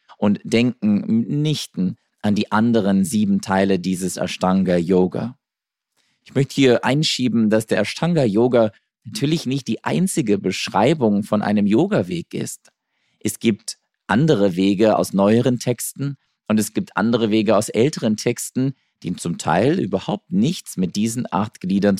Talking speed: 135 wpm